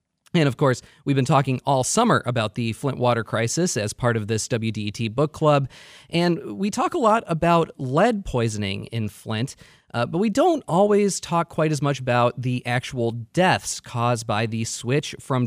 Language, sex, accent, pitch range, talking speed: English, male, American, 115-165 Hz, 185 wpm